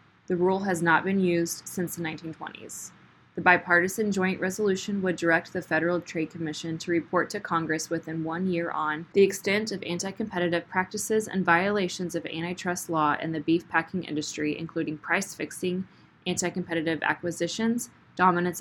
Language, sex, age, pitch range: English, female, 10-29, 160-185 Hz